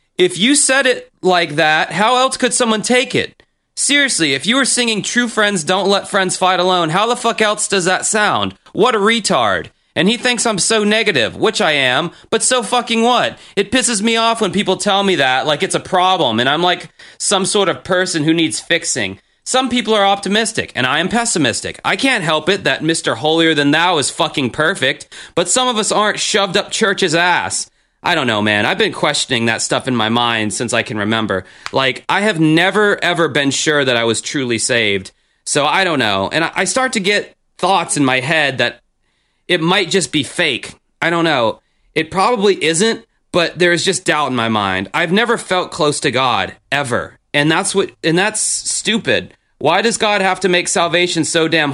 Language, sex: English, male